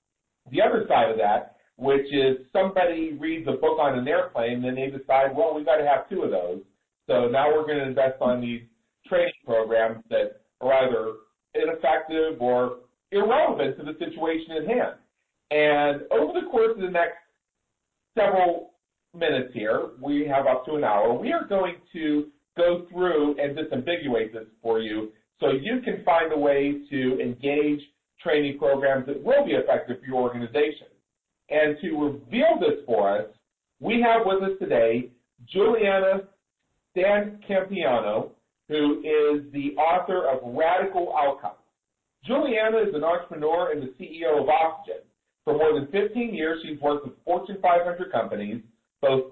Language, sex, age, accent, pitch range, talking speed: English, male, 40-59, American, 140-190 Hz, 160 wpm